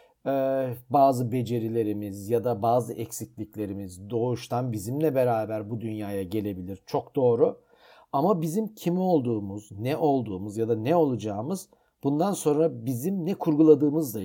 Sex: male